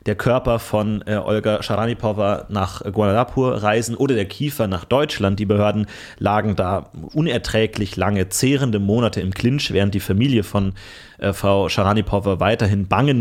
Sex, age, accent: male, 30-49, German